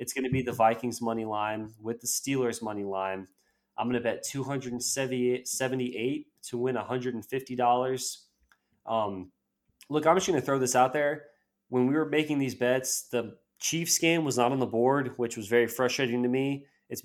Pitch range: 105-125 Hz